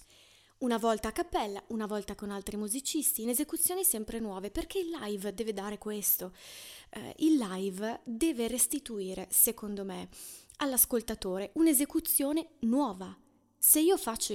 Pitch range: 205-280 Hz